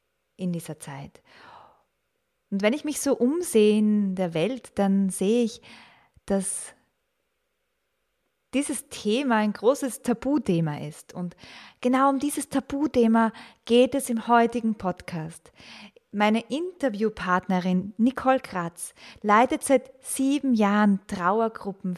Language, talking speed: German, 110 wpm